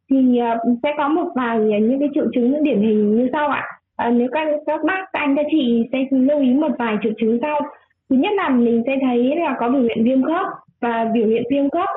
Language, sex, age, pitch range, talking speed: Vietnamese, female, 20-39, 230-290 Hz, 230 wpm